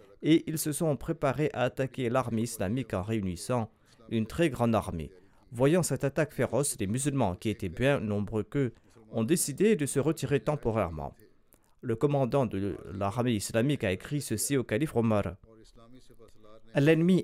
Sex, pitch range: male, 110-145 Hz